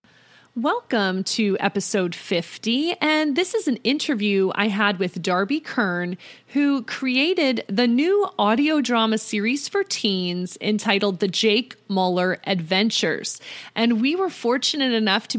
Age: 30-49